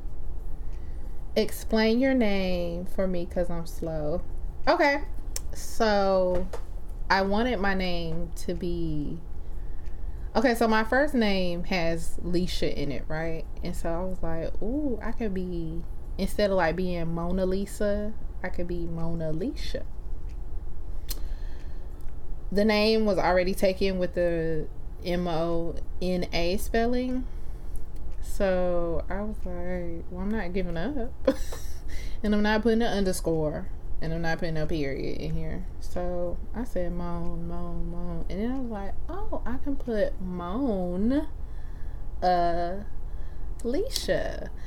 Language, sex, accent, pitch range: English, female, American, 145-200 Hz